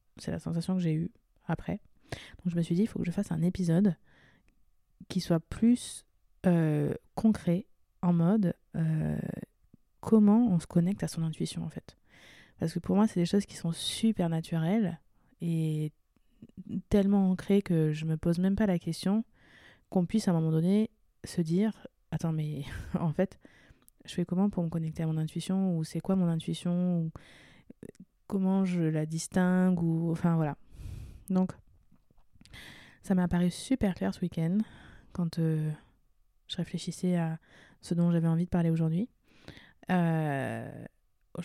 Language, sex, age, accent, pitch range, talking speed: French, female, 20-39, French, 165-195 Hz, 165 wpm